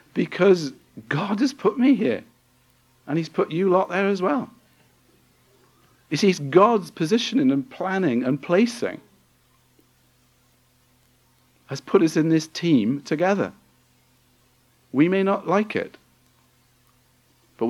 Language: English